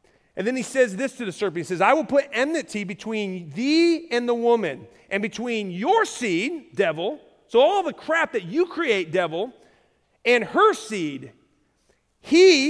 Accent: American